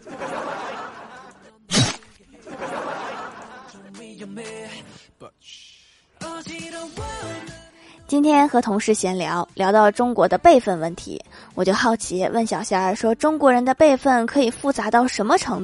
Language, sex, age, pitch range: Chinese, female, 20-39, 210-275 Hz